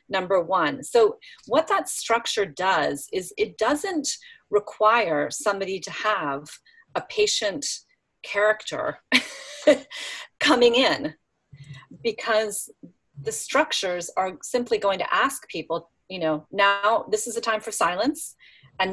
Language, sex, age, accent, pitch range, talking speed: English, female, 40-59, American, 175-250 Hz, 120 wpm